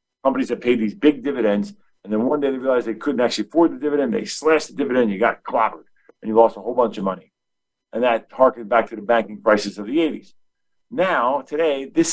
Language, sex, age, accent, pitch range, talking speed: English, male, 50-69, American, 115-170 Hz, 235 wpm